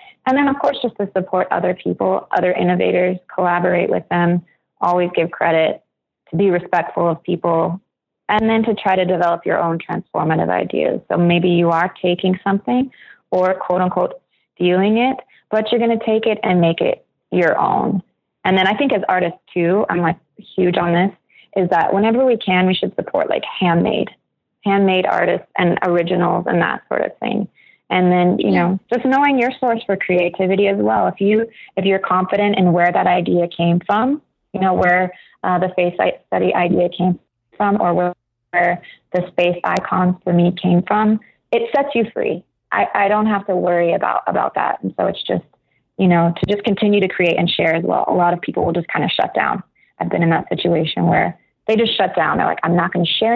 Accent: American